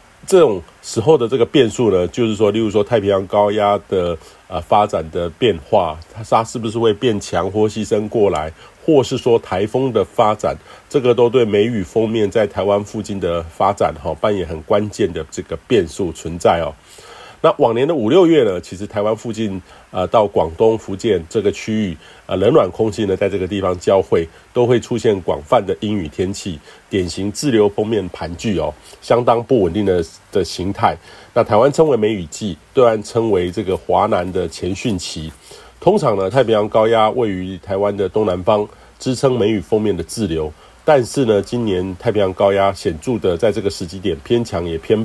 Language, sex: Chinese, male